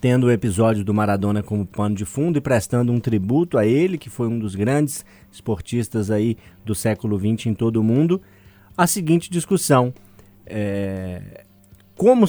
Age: 20-39